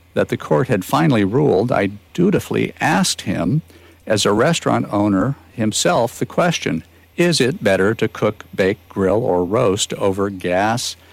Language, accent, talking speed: English, American, 150 wpm